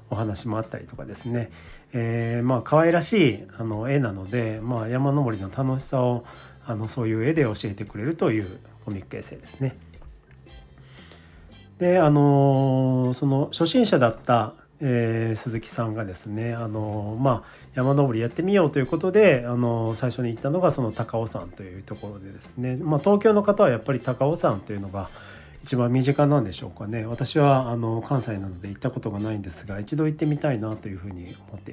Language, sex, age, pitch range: Japanese, male, 40-59, 105-140 Hz